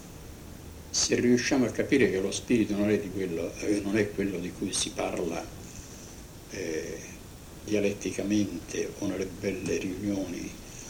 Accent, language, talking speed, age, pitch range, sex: native, Italian, 130 wpm, 60-79, 75-105 Hz, male